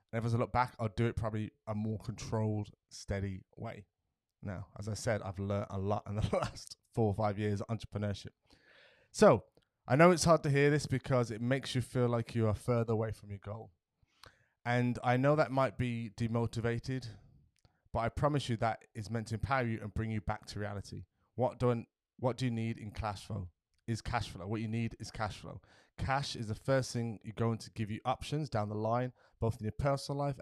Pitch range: 105-125 Hz